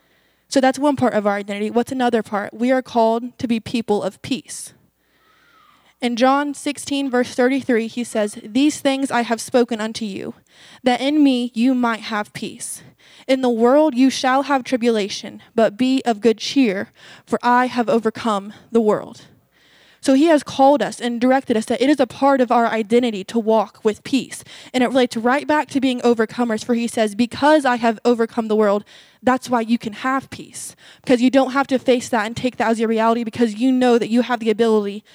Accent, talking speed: American, 205 wpm